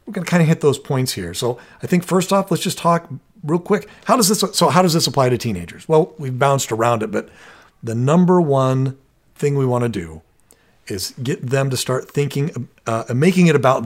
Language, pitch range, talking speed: English, 120-160 Hz, 235 wpm